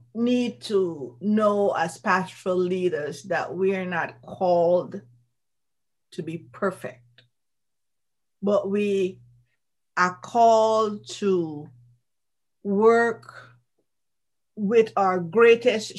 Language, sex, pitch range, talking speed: English, female, 170-230 Hz, 85 wpm